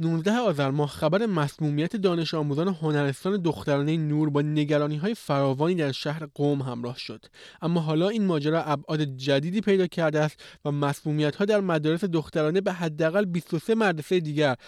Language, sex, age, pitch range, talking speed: Persian, male, 20-39, 145-185 Hz, 160 wpm